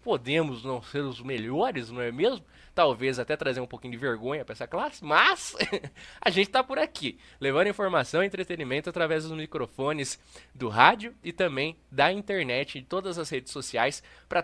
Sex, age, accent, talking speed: male, 20-39, Brazilian, 185 wpm